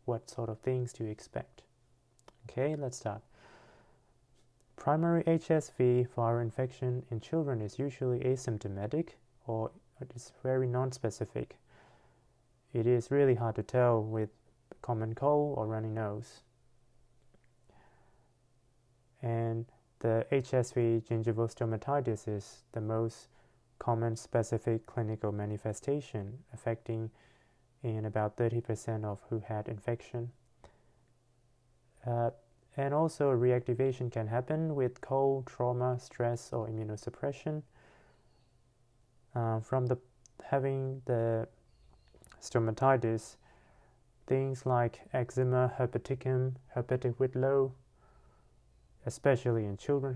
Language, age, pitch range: English, 30-49, 115-130 Hz